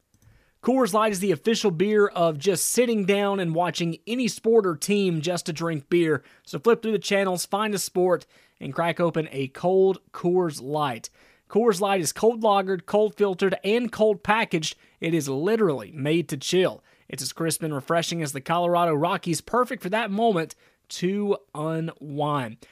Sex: male